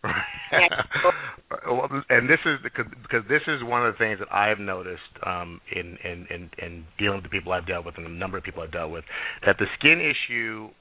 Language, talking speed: English, 210 wpm